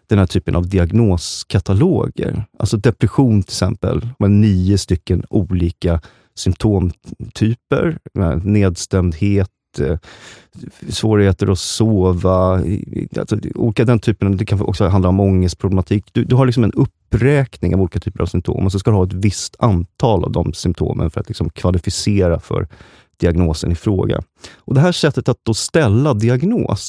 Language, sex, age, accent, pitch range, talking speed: Swedish, male, 30-49, native, 90-115 Hz, 145 wpm